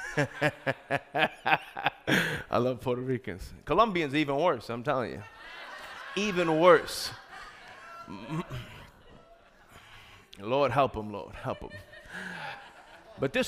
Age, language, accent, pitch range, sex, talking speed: 30-49, English, American, 145-220 Hz, male, 95 wpm